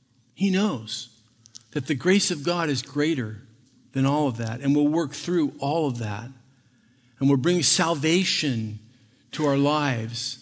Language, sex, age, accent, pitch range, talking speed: English, male, 50-69, American, 120-145 Hz, 155 wpm